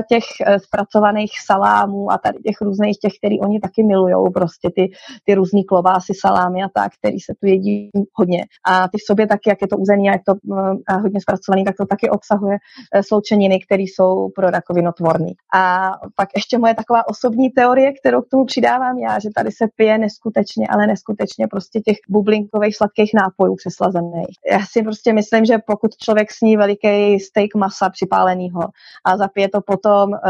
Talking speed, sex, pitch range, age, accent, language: 180 wpm, female, 195-215 Hz, 20-39, native, Czech